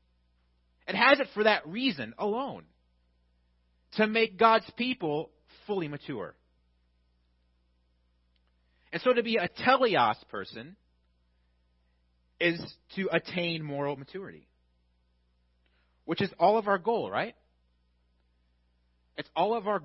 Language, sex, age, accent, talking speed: English, male, 30-49, American, 110 wpm